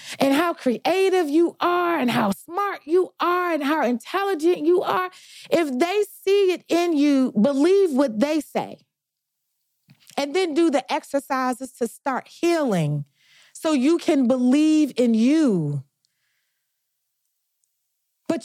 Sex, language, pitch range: female, English, 265-330 Hz